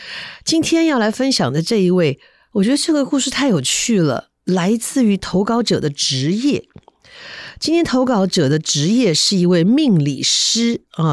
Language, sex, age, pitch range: Chinese, female, 50-69, 145-210 Hz